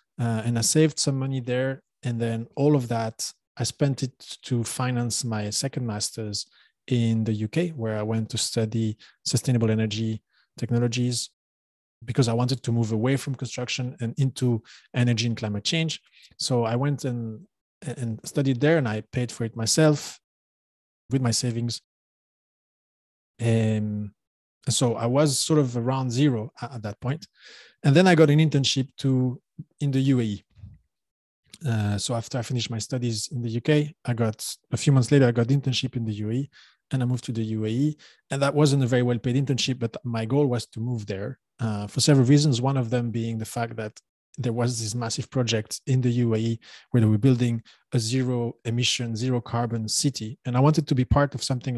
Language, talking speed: English, 190 wpm